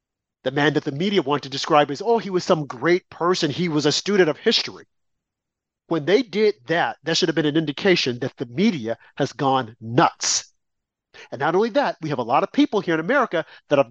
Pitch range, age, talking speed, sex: 140-190 Hz, 50-69, 225 wpm, male